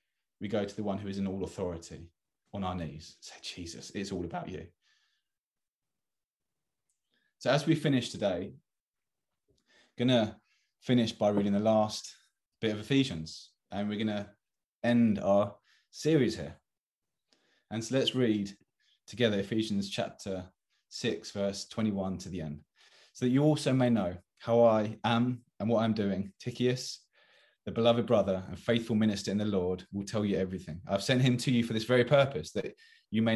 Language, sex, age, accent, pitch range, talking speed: English, male, 20-39, British, 95-115 Hz, 165 wpm